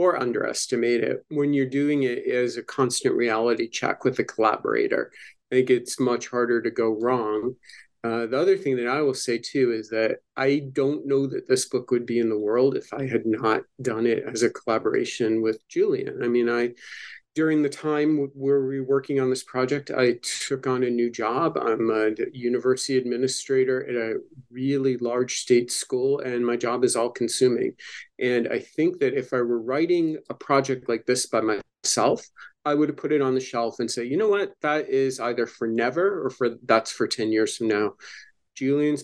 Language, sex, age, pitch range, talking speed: English, male, 40-59, 115-140 Hz, 200 wpm